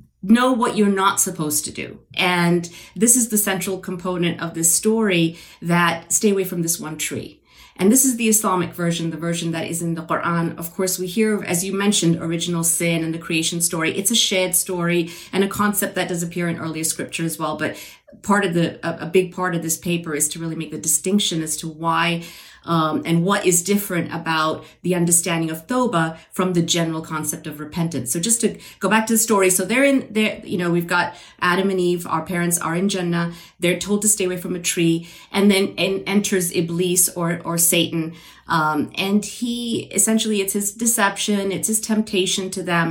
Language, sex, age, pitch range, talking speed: English, female, 40-59, 165-195 Hz, 210 wpm